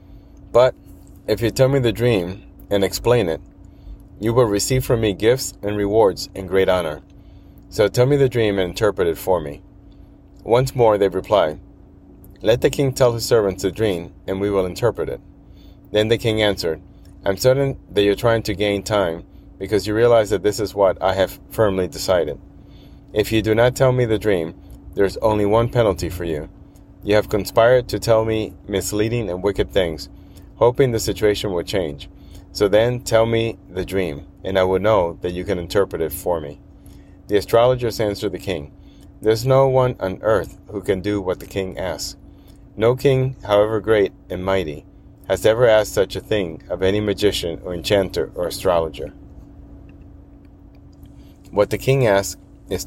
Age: 30-49